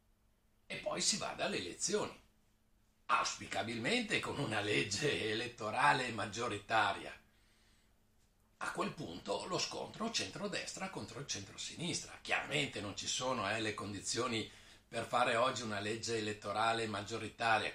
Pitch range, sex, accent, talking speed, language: 105-140 Hz, male, native, 120 wpm, Italian